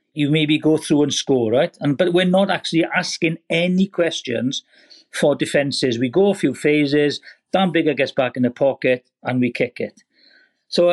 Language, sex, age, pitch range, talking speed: English, male, 50-69, 140-175 Hz, 185 wpm